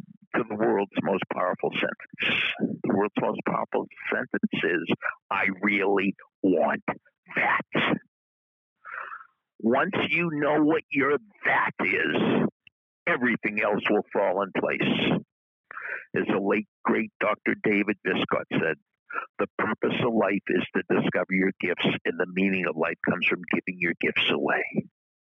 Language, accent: English, American